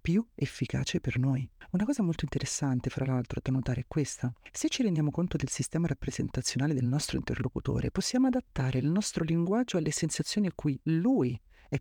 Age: 40-59